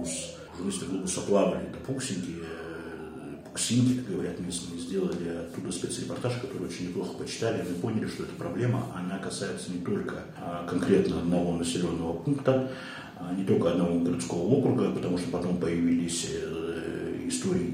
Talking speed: 135 wpm